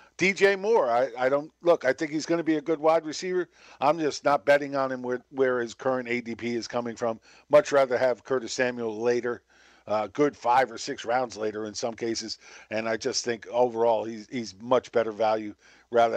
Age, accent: 50-69, American